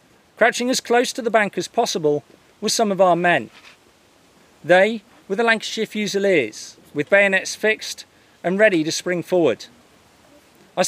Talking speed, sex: 150 wpm, male